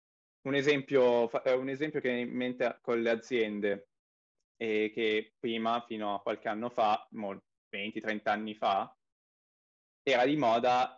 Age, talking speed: 20-39, 140 wpm